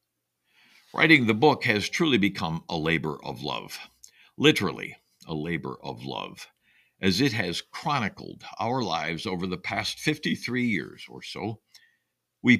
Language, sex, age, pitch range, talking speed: English, male, 60-79, 85-140 Hz, 140 wpm